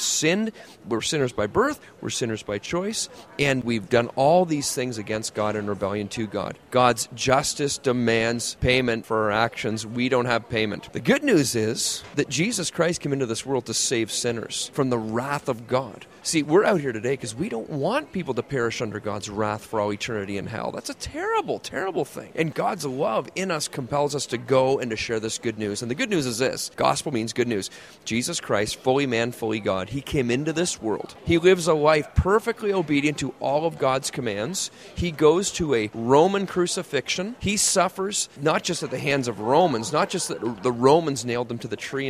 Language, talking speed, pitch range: English, 210 wpm, 115-150 Hz